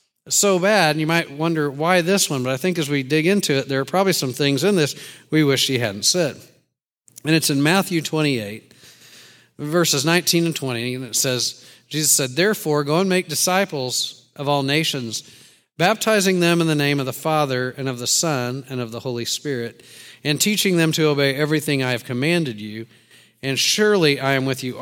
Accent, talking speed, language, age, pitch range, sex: American, 205 wpm, English, 50-69, 135-180 Hz, male